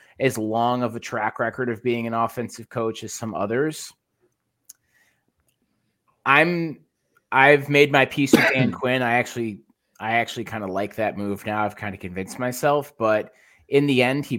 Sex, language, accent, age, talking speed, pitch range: male, English, American, 20-39, 175 wpm, 105-135 Hz